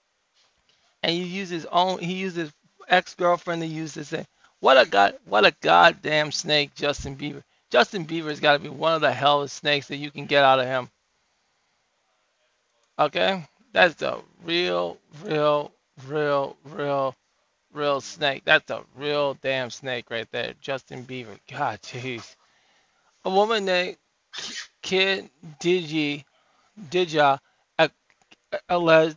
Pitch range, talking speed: 145-170 Hz, 135 wpm